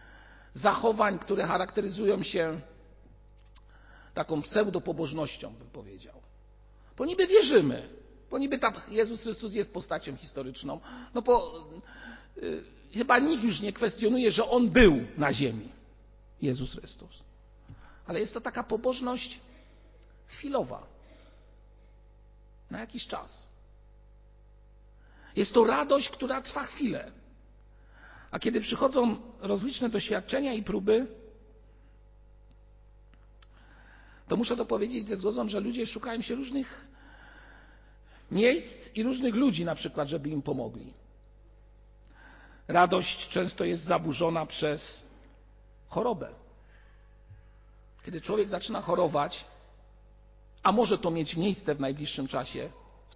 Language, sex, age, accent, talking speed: Polish, male, 50-69, native, 105 wpm